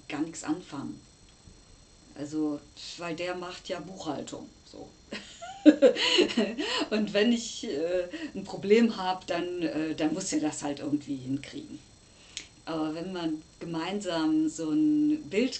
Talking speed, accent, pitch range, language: 125 wpm, German, 140-180 Hz, German